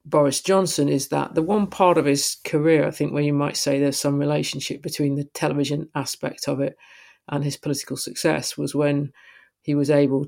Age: 40-59